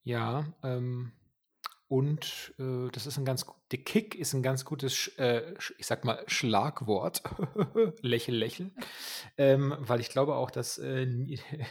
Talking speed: 155 wpm